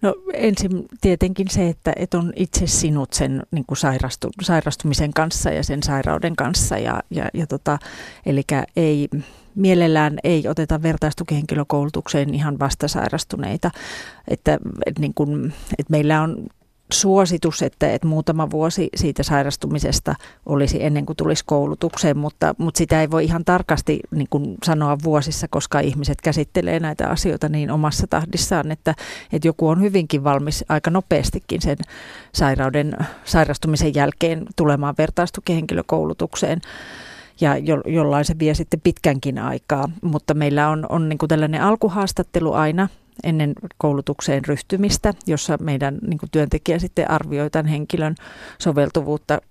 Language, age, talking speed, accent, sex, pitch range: Finnish, 40-59, 130 wpm, native, female, 145-170 Hz